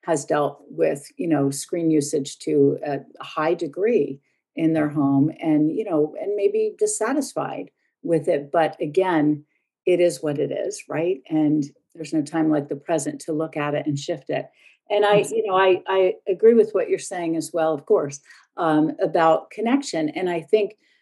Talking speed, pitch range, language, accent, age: 185 wpm, 160-205 Hz, English, American, 50-69